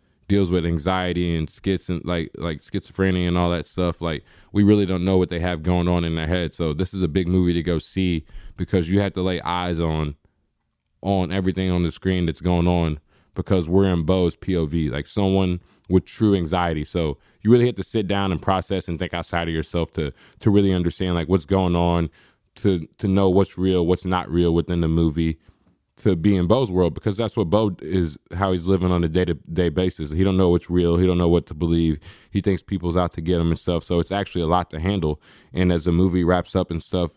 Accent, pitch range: American, 85-95 Hz